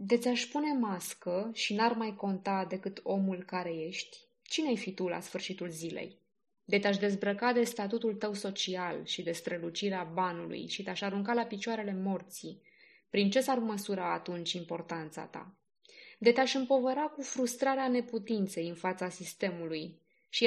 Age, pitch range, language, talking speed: 20-39, 180-230 Hz, Romanian, 150 wpm